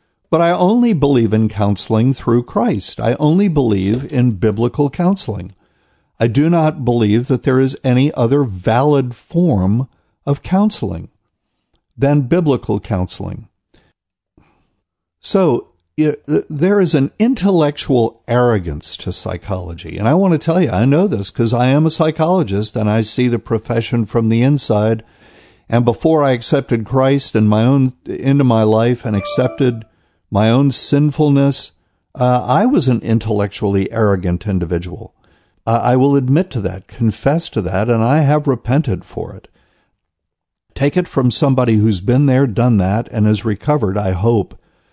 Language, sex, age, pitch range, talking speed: English, male, 50-69, 105-140 Hz, 150 wpm